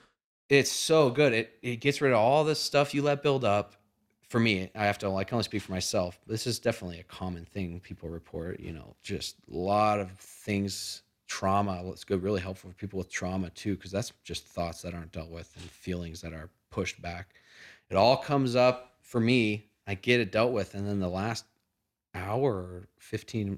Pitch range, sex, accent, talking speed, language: 90-110 Hz, male, American, 210 wpm, English